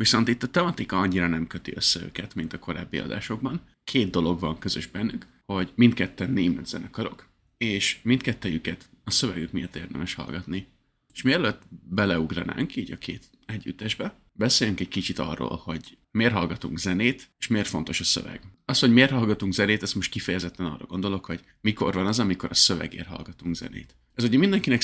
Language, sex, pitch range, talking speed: Hungarian, male, 85-110 Hz, 170 wpm